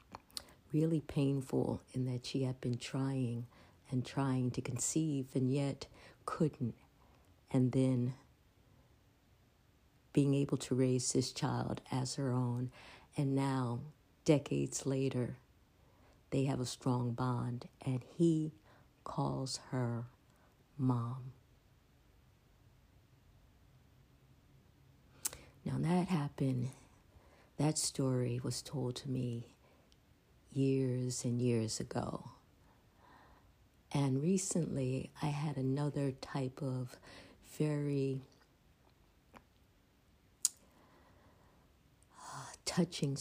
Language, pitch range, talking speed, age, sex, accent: English, 125-145 Hz, 85 wpm, 50-69, female, American